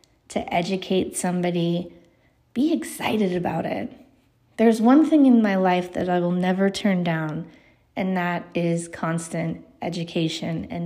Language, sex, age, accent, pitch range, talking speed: English, female, 20-39, American, 175-220 Hz, 140 wpm